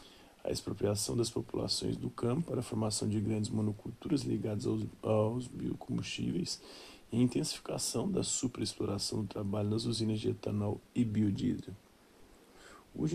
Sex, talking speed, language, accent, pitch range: male, 135 wpm, Portuguese, Brazilian, 105-115 Hz